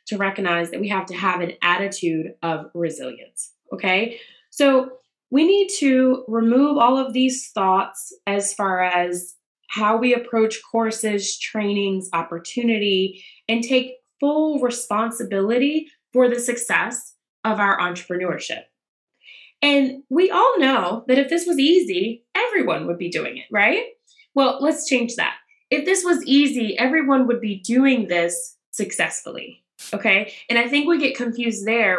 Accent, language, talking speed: American, English, 145 wpm